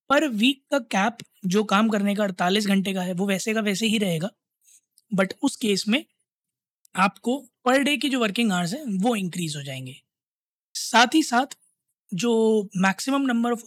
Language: Hindi